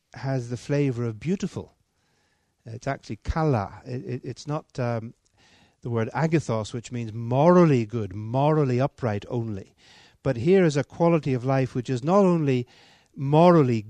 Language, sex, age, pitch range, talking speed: Danish, male, 60-79, 115-160 Hz, 145 wpm